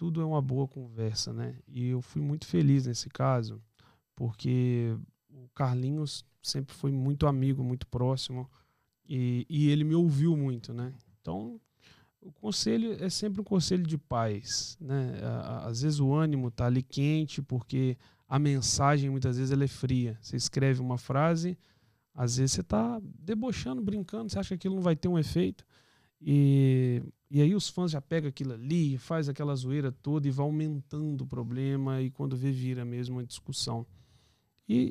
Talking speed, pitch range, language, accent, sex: 170 wpm, 125-175 Hz, Portuguese, Brazilian, male